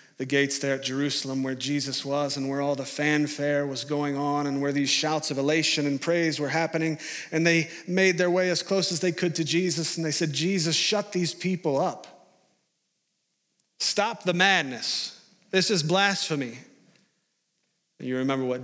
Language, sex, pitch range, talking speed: English, male, 130-160 Hz, 175 wpm